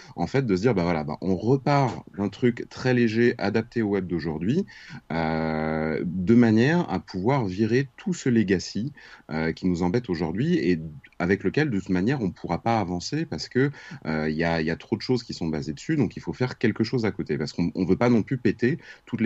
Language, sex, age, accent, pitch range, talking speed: French, male, 30-49, French, 80-110 Hz, 230 wpm